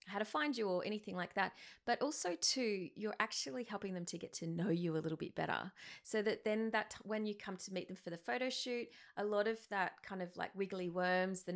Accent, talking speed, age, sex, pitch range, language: Australian, 255 wpm, 30-49, female, 180-215 Hz, English